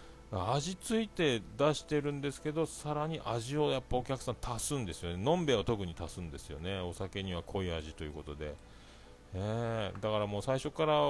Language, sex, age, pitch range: Japanese, male, 40-59, 90-130 Hz